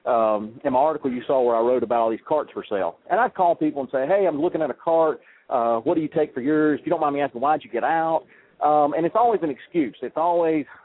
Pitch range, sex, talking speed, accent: 130-175 Hz, male, 295 wpm, American